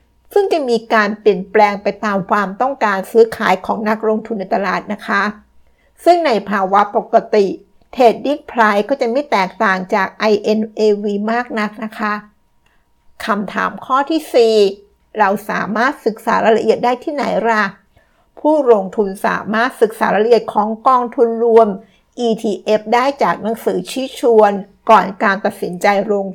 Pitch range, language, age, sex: 200-235 Hz, Thai, 60-79, female